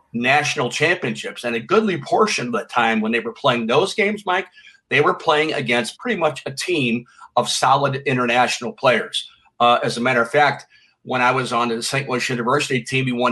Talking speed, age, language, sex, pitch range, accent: 205 wpm, 50-69, English, male, 120-160 Hz, American